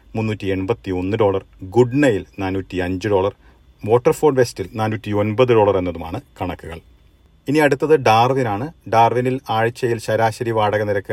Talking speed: 125 wpm